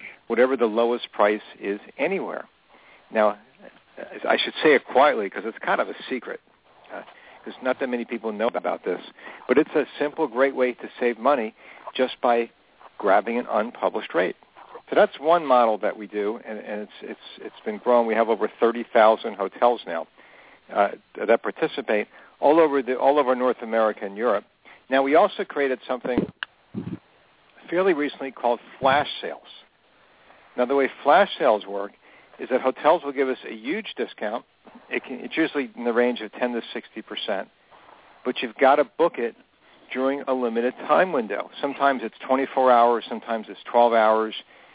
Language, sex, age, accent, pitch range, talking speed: English, male, 60-79, American, 115-135 Hz, 175 wpm